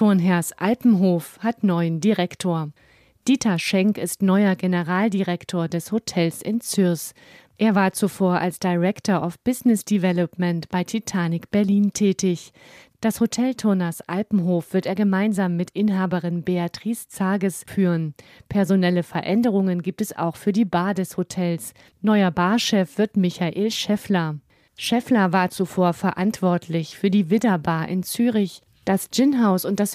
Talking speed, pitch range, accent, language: 135 wpm, 175-205 Hz, German, German